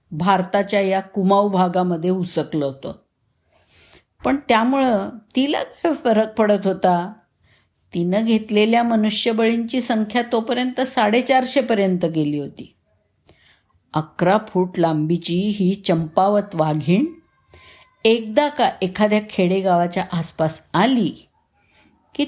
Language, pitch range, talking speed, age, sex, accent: Marathi, 165-220 Hz, 95 wpm, 50-69, female, native